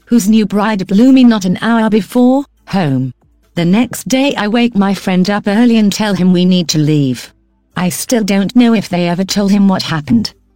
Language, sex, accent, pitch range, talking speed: English, female, British, 180-225 Hz, 210 wpm